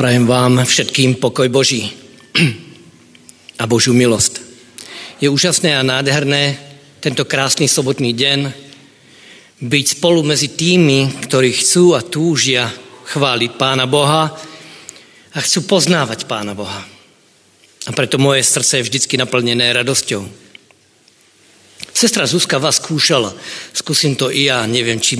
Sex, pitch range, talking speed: male, 120-155 Hz, 120 wpm